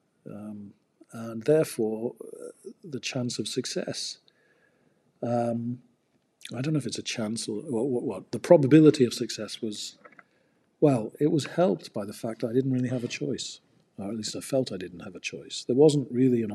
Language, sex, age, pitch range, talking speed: English, male, 50-69, 110-130 Hz, 185 wpm